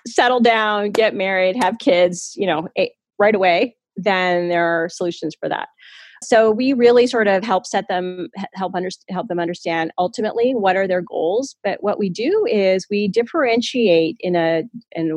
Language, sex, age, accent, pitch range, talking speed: English, female, 30-49, American, 180-235 Hz, 170 wpm